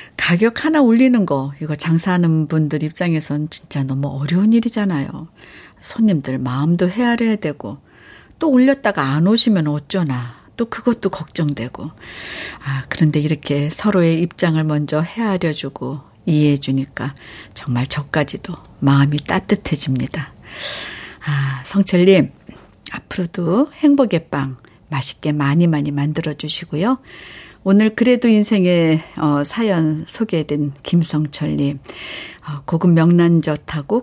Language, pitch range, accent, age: Korean, 140-190 Hz, native, 60-79